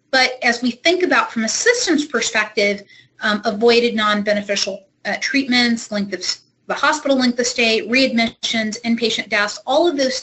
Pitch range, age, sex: 200-245 Hz, 30-49, female